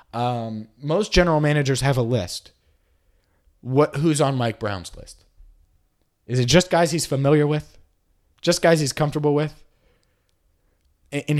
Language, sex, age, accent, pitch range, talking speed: English, male, 20-39, American, 100-150 Hz, 135 wpm